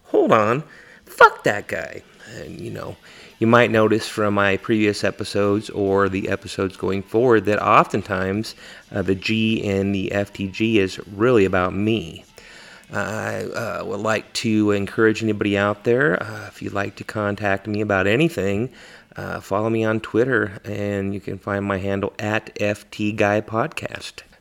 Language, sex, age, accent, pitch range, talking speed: English, male, 30-49, American, 100-115 Hz, 155 wpm